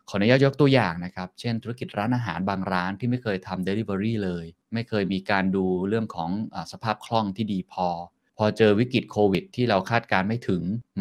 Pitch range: 95-120 Hz